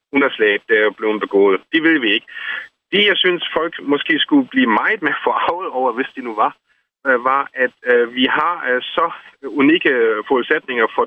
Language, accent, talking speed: Danish, native, 180 wpm